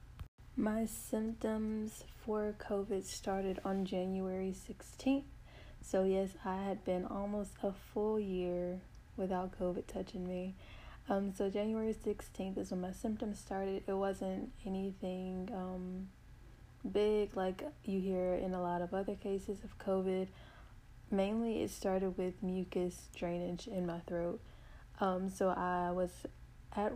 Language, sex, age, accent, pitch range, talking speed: English, female, 20-39, American, 180-205 Hz, 135 wpm